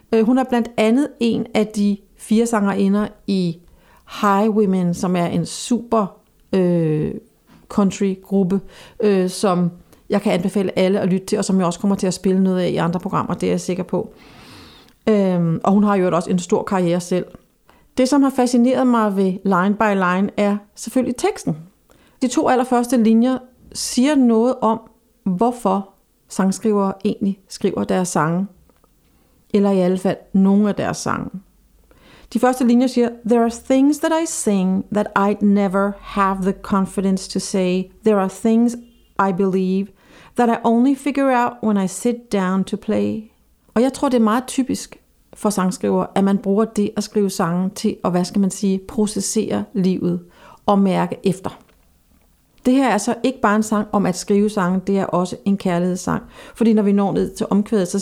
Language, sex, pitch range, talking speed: Danish, female, 190-230 Hz, 175 wpm